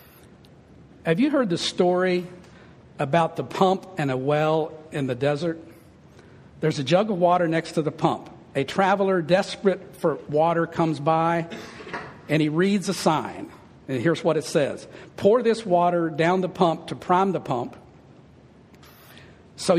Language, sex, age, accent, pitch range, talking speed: English, male, 50-69, American, 150-190 Hz, 155 wpm